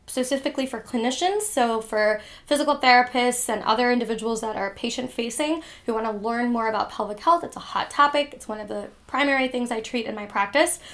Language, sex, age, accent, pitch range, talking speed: English, female, 10-29, American, 215-255 Hz, 195 wpm